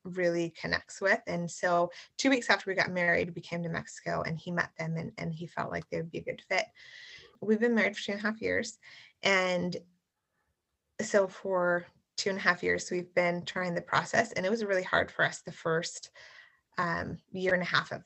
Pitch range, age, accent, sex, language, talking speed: 175-205 Hz, 20-39, American, female, English, 225 wpm